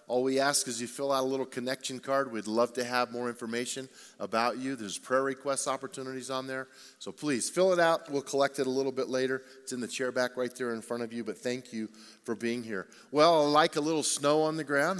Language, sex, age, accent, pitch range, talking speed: English, male, 40-59, American, 120-150 Hz, 250 wpm